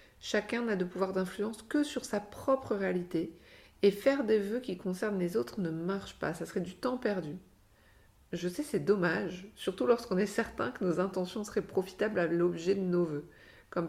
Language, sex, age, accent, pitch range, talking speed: French, female, 50-69, French, 170-210 Hz, 195 wpm